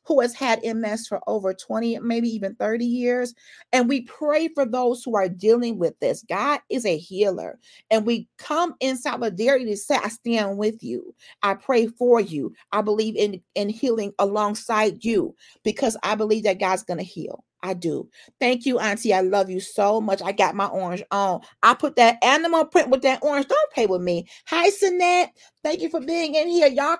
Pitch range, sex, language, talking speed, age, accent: 205-280 Hz, female, English, 200 wpm, 40-59, American